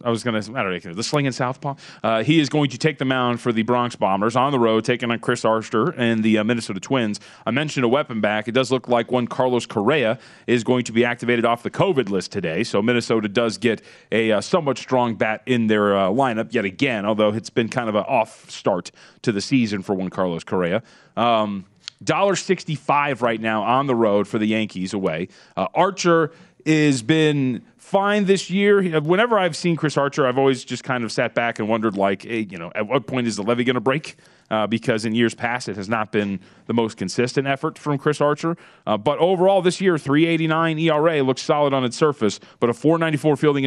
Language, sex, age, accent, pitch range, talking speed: English, male, 30-49, American, 110-145 Hz, 225 wpm